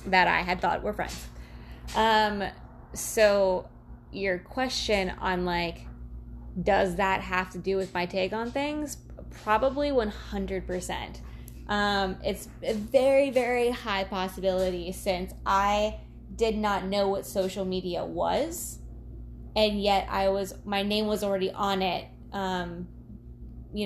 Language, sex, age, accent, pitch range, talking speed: English, female, 20-39, American, 170-200 Hz, 130 wpm